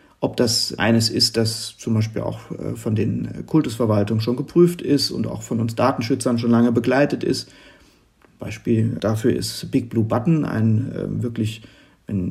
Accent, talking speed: German, 155 wpm